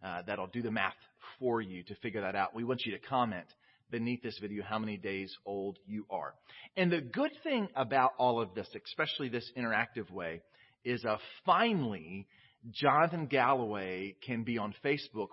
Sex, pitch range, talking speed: male, 110-140 Hz, 180 wpm